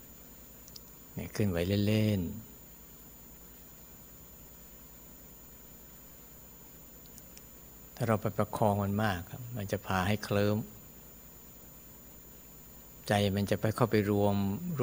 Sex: male